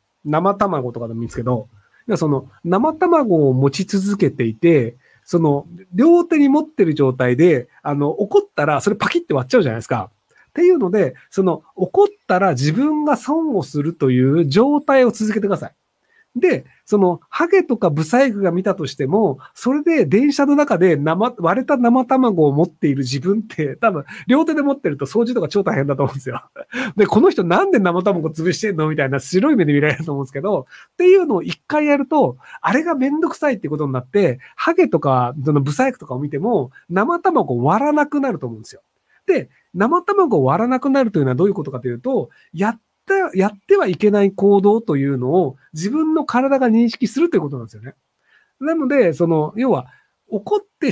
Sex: male